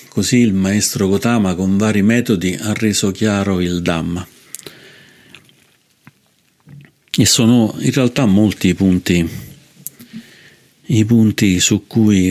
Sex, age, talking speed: male, 50-69, 110 wpm